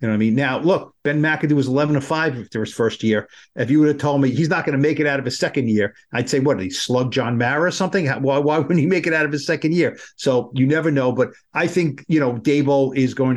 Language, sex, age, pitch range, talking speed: English, male, 50-69, 125-155 Hz, 295 wpm